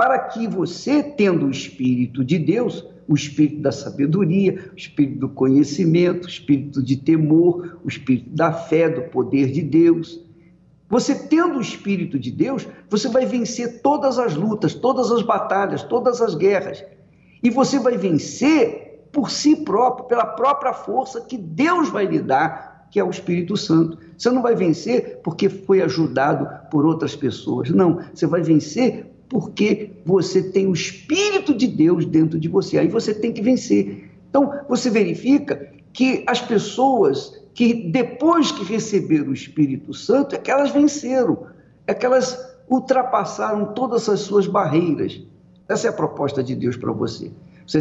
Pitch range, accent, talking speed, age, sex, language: 155-245 Hz, Brazilian, 160 wpm, 50-69, male, Portuguese